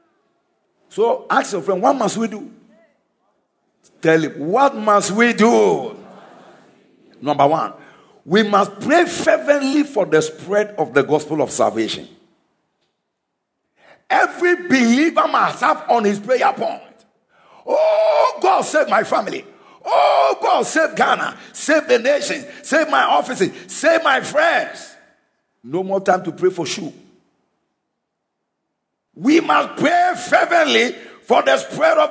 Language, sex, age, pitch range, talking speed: English, male, 50-69, 255-320 Hz, 130 wpm